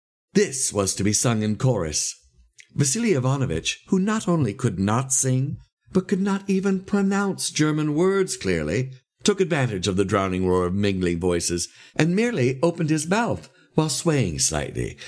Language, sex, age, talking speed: English, male, 60-79, 160 wpm